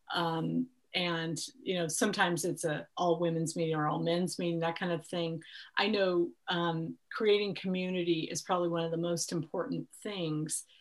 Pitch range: 165-195 Hz